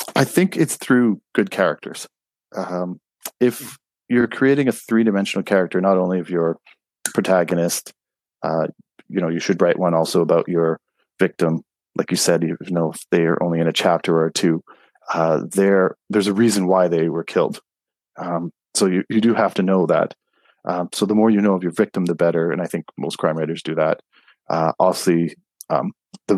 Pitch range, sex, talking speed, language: 85-110 Hz, male, 190 wpm, English